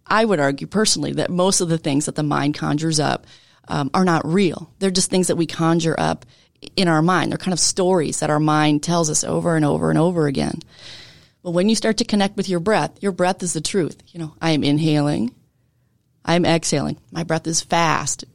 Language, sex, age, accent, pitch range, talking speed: English, female, 30-49, American, 150-190 Hz, 220 wpm